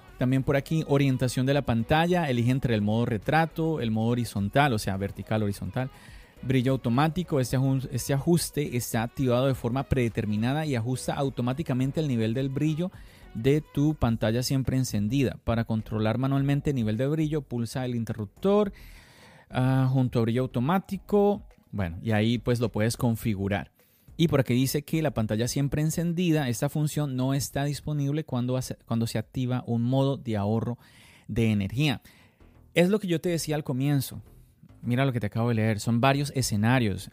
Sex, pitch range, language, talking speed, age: male, 115-145 Hz, Spanish, 170 wpm, 30-49